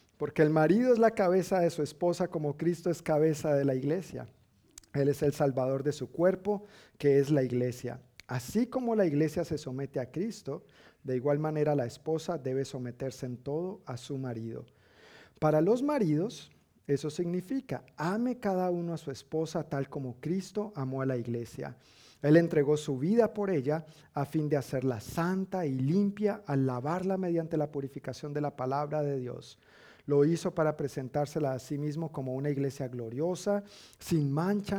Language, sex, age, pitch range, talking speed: Spanish, male, 40-59, 130-170 Hz, 175 wpm